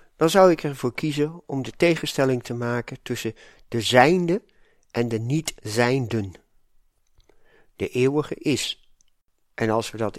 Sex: male